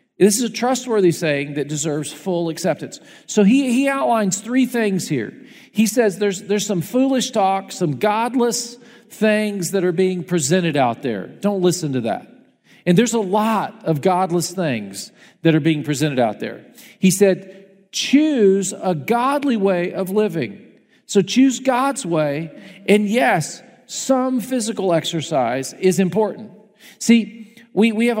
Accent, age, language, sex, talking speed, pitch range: American, 50-69, English, male, 155 wpm, 180-225 Hz